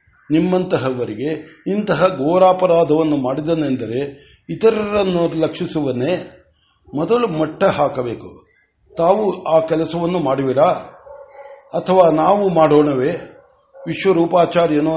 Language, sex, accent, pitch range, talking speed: Kannada, male, native, 155-185 Hz, 70 wpm